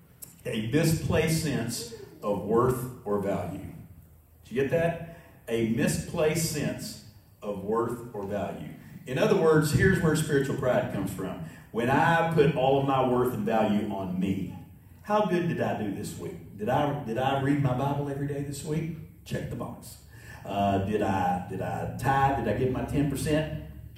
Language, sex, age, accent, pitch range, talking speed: English, male, 50-69, American, 115-155 Hz, 170 wpm